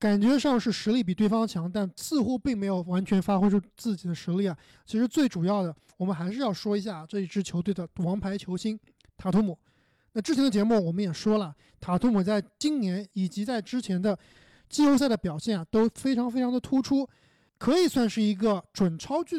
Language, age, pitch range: Chinese, 20-39, 190-250 Hz